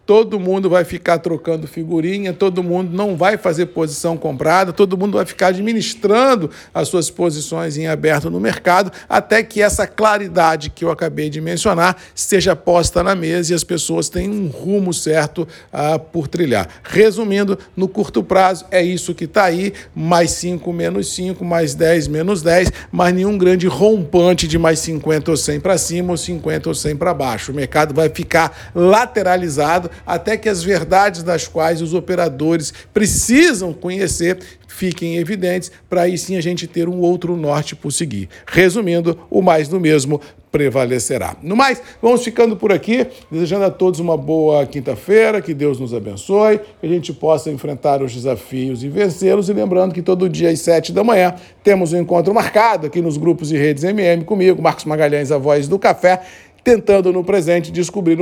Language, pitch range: Portuguese, 160-190 Hz